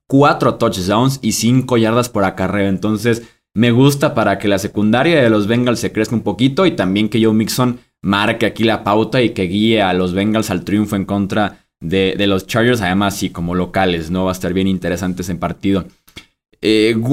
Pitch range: 105-135 Hz